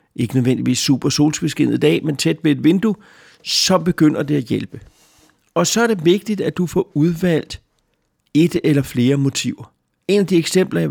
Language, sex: Danish, male